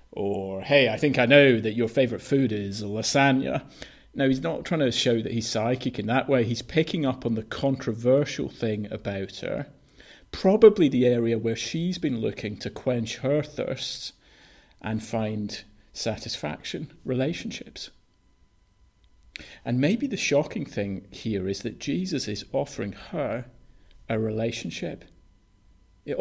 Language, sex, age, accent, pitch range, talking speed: English, male, 40-59, British, 105-140 Hz, 145 wpm